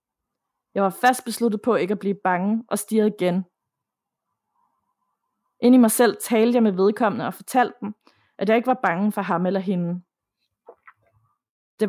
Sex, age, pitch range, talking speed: female, 30-49, 185-230 Hz, 165 wpm